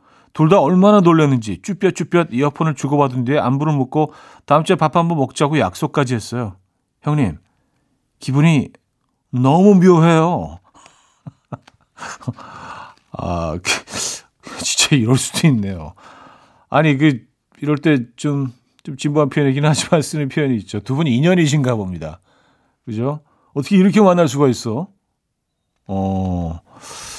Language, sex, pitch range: Korean, male, 115-160 Hz